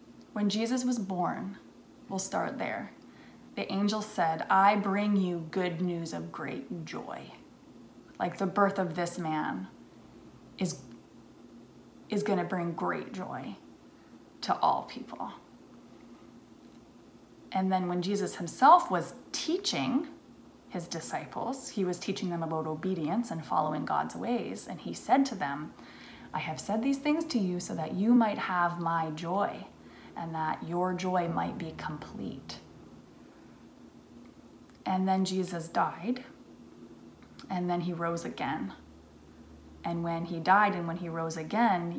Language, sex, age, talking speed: English, female, 20-39, 135 wpm